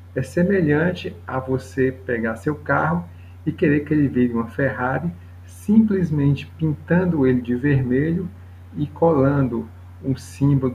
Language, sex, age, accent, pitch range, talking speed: Portuguese, male, 50-69, Brazilian, 100-150 Hz, 130 wpm